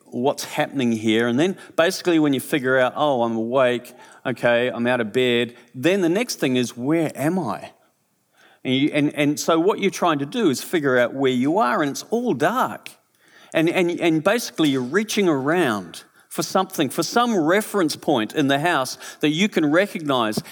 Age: 50-69